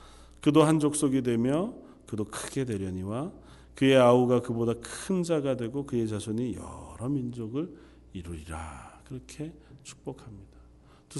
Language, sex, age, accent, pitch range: Korean, male, 40-59, native, 90-145 Hz